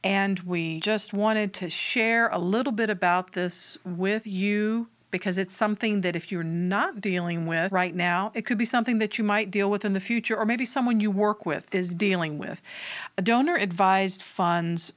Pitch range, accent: 175-210 Hz, American